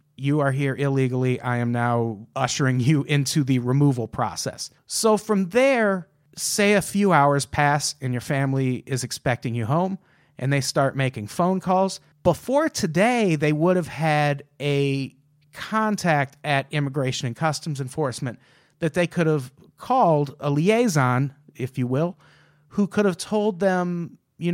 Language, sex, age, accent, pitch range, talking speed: English, male, 40-59, American, 140-180 Hz, 155 wpm